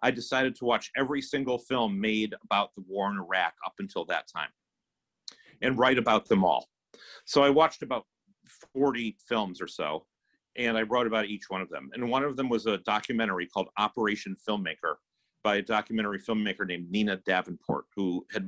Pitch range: 100-130 Hz